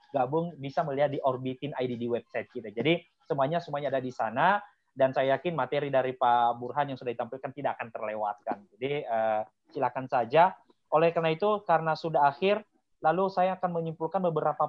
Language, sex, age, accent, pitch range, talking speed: Indonesian, male, 30-49, native, 140-185 Hz, 170 wpm